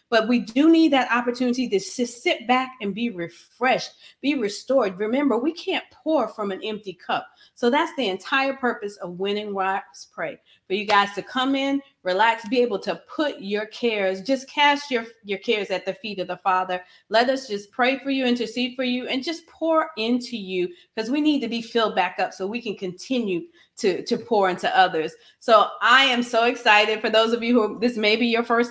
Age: 30-49